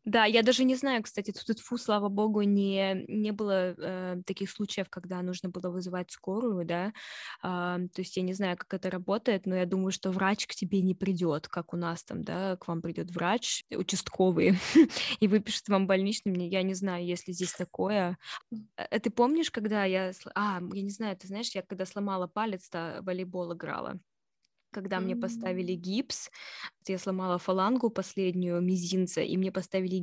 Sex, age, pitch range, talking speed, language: female, 20-39, 180-205 Hz, 185 wpm, Russian